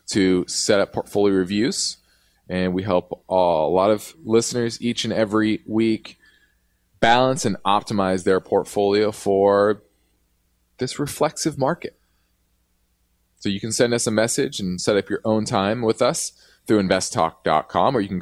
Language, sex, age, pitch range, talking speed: English, male, 20-39, 90-130 Hz, 150 wpm